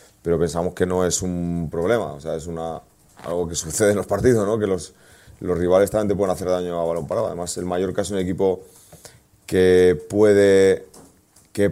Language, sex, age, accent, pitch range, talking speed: Spanish, male, 30-49, Spanish, 95-110 Hz, 205 wpm